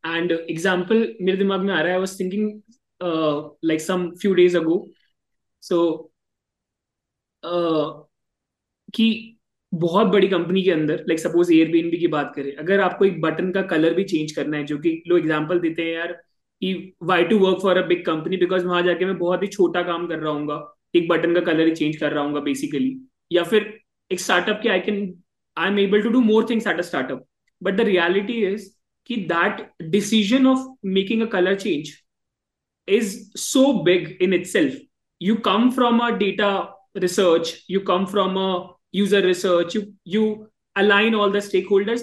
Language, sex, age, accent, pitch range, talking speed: English, male, 20-39, Indian, 175-215 Hz, 110 wpm